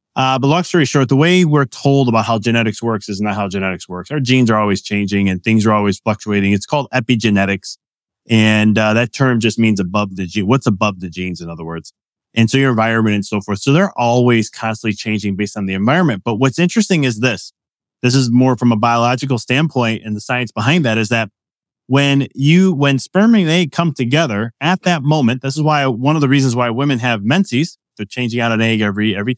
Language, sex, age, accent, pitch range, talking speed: English, male, 20-39, American, 110-155 Hz, 225 wpm